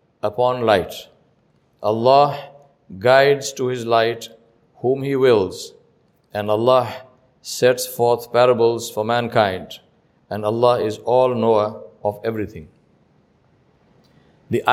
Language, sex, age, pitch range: English, male, 50-69, 125-160 Hz